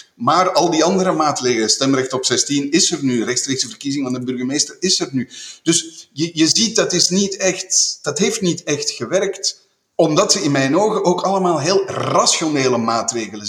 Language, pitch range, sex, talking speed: Dutch, 130-185 Hz, male, 185 wpm